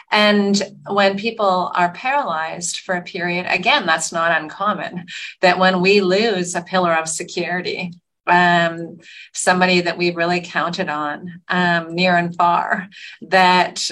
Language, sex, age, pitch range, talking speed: English, female, 40-59, 165-185 Hz, 140 wpm